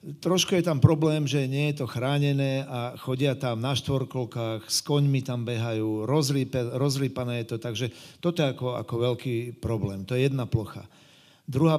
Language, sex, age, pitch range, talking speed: Slovak, male, 40-59, 120-145 Hz, 175 wpm